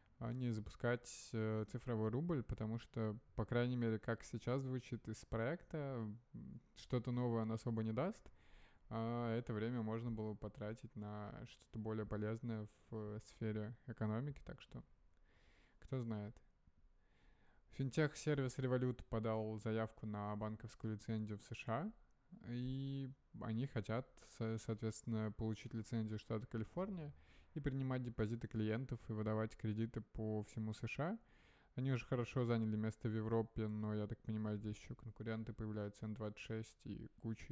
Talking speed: 130 wpm